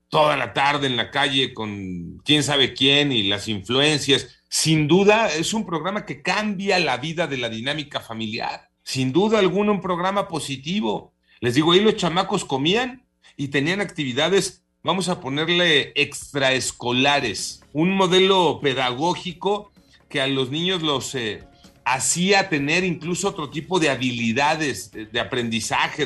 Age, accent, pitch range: 40-59, Mexican, 115-155 Hz